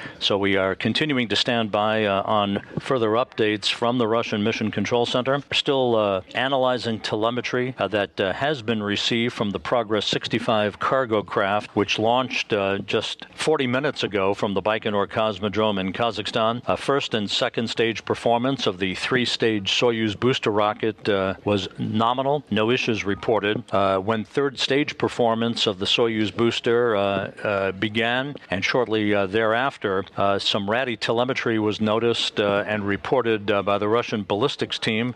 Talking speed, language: 160 wpm, English